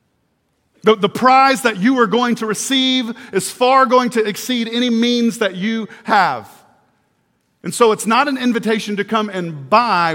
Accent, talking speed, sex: American, 170 wpm, male